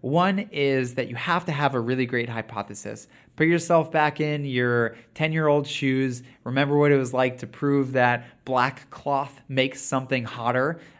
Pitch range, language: 115-145 Hz, English